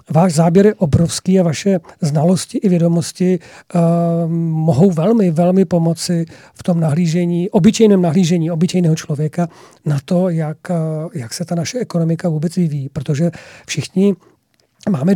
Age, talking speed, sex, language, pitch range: 40-59, 140 wpm, male, Czech, 160-185 Hz